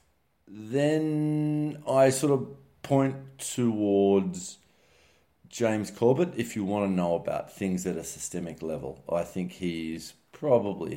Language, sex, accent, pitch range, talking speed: English, male, Australian, 85-125 Hz, 125 wpm